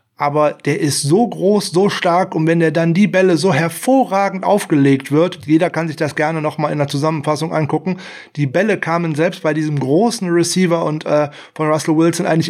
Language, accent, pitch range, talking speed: German, German, 145-185 Hz, 195 wpm